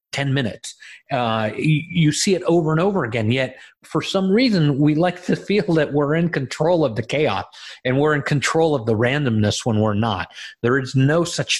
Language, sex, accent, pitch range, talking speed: English, male, American, 120-160 Hz, 195 wpm